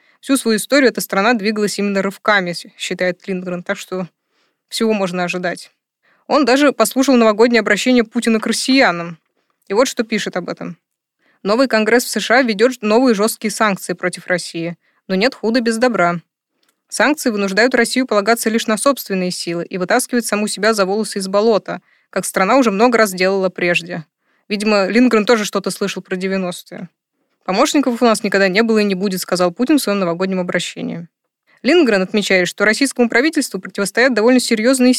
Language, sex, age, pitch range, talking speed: Russian, female, 20-39, 190-245 Hz, 165 wpm